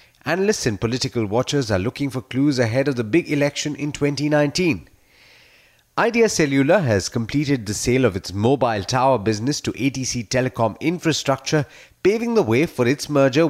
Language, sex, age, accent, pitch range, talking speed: English, male, 30-49, Indian, 110-145 Hz, 160 wpm